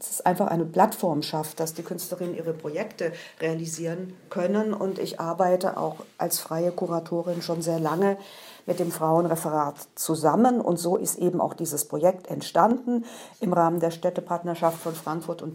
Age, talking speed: 50-69, 160 wpm